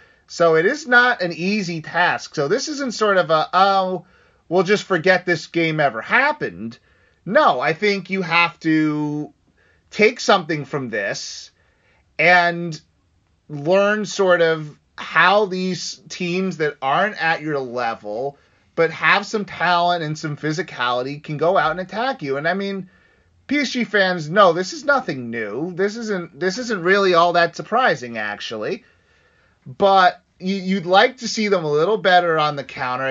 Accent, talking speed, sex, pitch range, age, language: American, 160 wpm, male, 150-195 Hz, 30-49, English